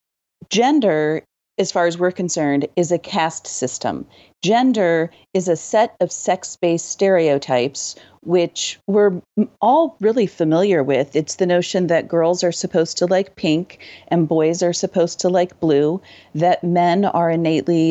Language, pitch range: English, 155-190 Hz